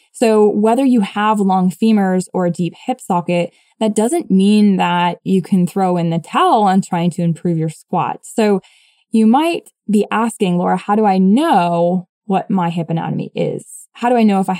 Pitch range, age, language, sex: 180-235 Hz, 10-29, English, female